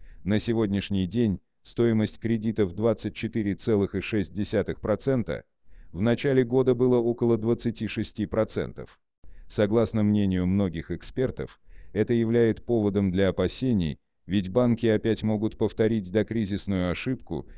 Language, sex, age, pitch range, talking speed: Russian, male, 40-59, 95-115 Hz, 95 wpm